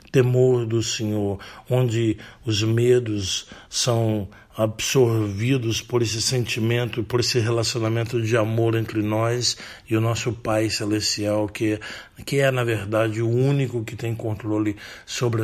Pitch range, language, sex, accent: 110-125 Hz, Portuguese, male, Brazilian